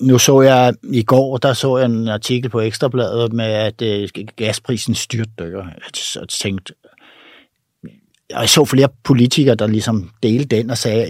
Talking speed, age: 190 wpm, 60-79